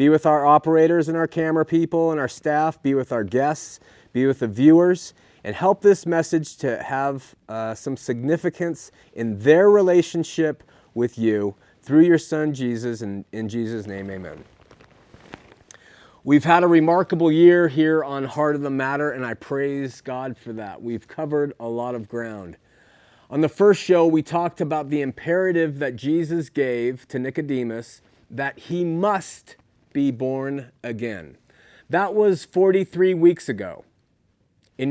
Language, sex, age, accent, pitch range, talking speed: English, male, 30-49, American, 125-165 Hz, 155 wpm